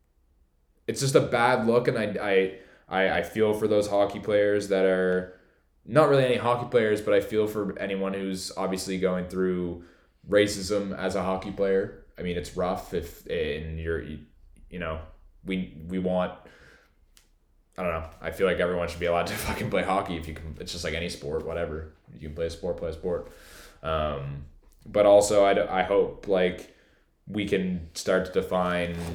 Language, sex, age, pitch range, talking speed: English, male, 10-29, 80-100 Hz, 185 wpm